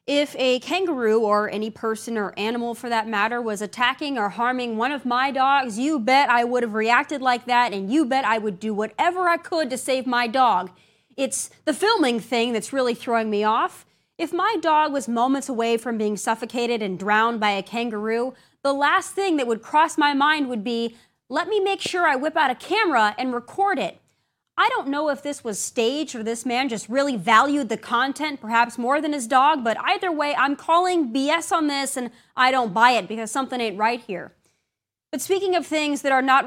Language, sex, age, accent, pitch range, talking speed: English, female, 30-49, American, 230-310 Hz, 215 wpm